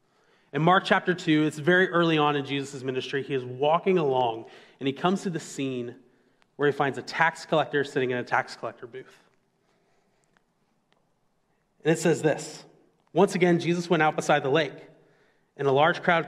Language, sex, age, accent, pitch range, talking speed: English, male, 30-49, American, 135-170 Hz, 180 wpm